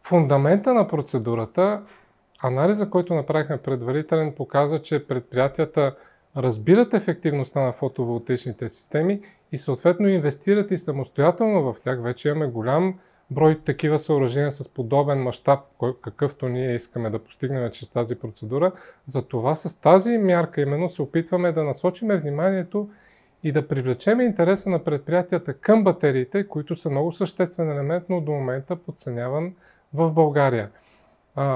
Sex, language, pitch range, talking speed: male, Bulgarian, 135-175 Hz, 135 wpm